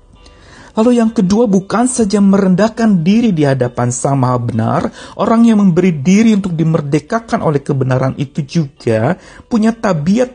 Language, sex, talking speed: Indonesian, male, 140 wpm